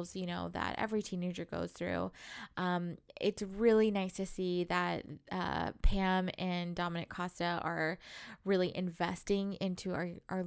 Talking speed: 145 wpm